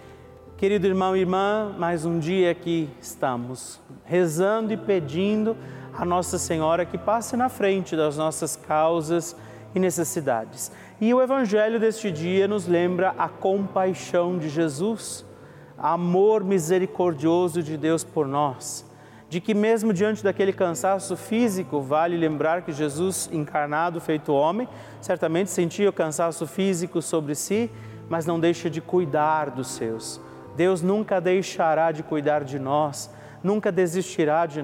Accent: Brazilian